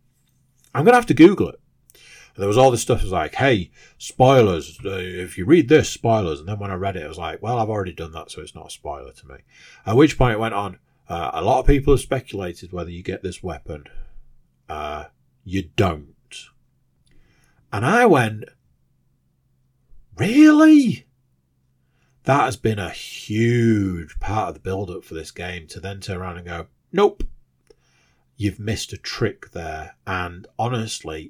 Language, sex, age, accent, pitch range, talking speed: English, male, 40-59, British, 85-125 Hz, 185 wpm